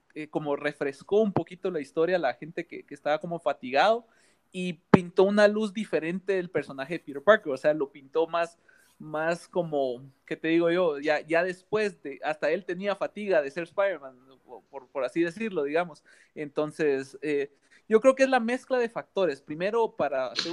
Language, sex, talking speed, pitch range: Spanish, male, 185 wpm, 150-205 Hz